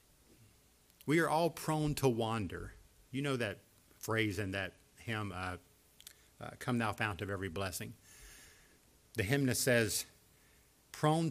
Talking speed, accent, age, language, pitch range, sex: 140 wpm, American, 50-69, English, 105-145 Hz, male